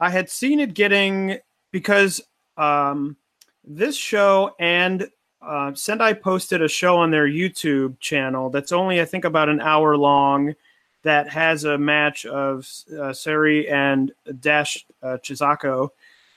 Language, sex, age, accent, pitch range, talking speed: English, male, 30-49, American, 145-170 Hz, 140 wpm